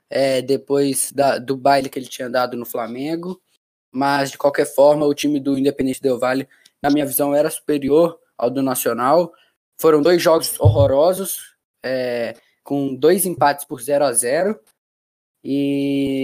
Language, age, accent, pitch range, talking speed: Portuguese, 10-29, Brazilian, 135-170 Hz, 150 wpm